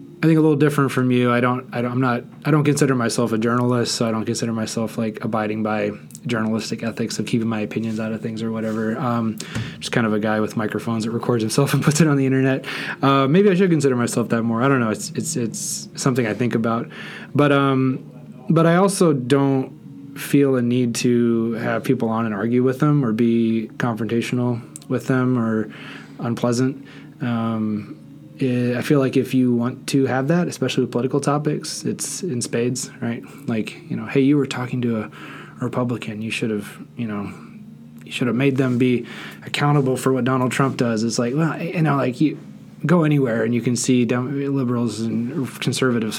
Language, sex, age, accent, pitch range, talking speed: English, male, 20-39, American, 115-135 Hz, 205 wpm